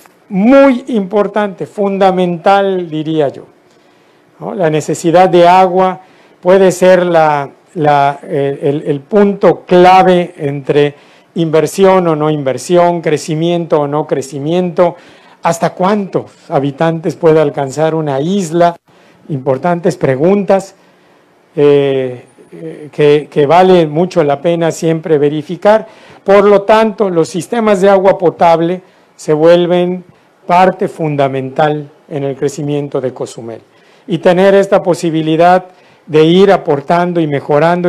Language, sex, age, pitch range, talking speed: Spanish, male, 50-69, 145-180 Hz, 110 wpm